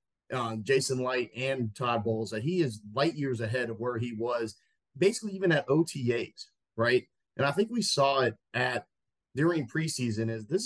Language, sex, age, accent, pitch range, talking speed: English, male, 30-49, American, 115-150 Hz, 180 wpm